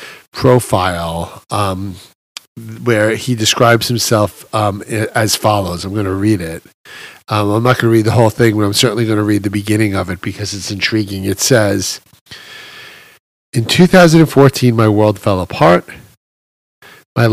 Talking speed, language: 155 wpm, English